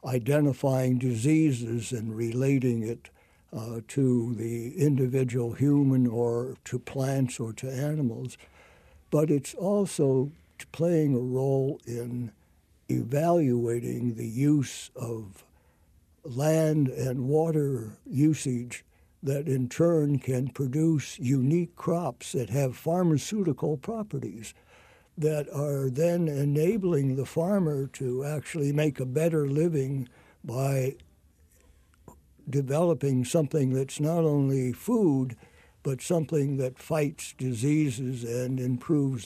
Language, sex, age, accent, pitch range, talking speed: English, male, 60-79, American, 120-150 Hz, 105 wpm